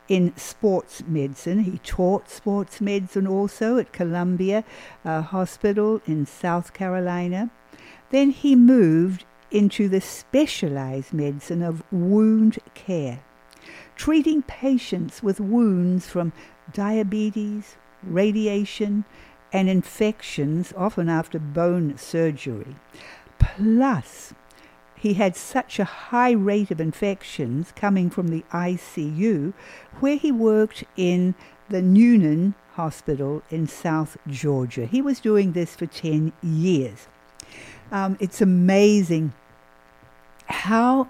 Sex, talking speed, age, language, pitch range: female, 105 wpm, 60-79, English, 160-210 Hz